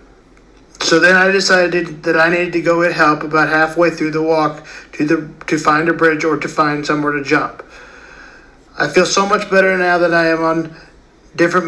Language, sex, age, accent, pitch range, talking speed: English, male, 50-69, American, 165-185 Hz, 200 wpm